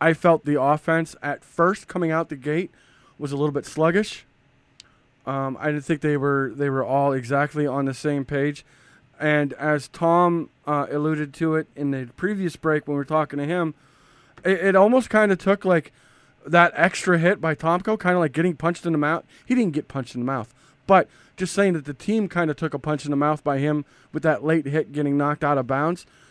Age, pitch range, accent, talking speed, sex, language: 20-39, 140-165 Hz, American, 225 wpm, male, English